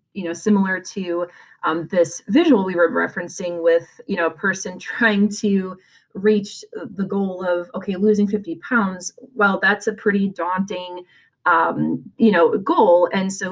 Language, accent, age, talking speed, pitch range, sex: English, American, 30-49, 160 wpm, 170-205 Hz, female